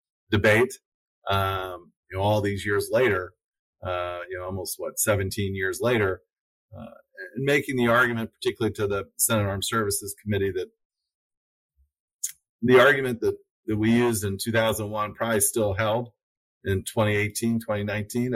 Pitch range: 100-130 Hz